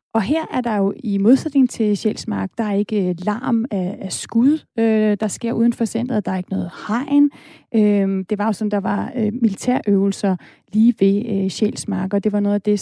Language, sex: Danish, female